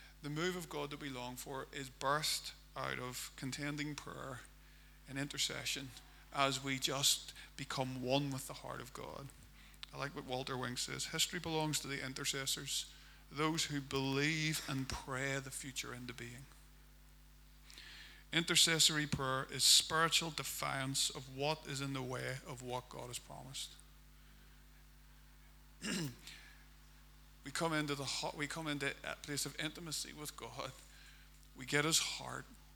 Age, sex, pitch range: 50-69, male, 125-145 Hz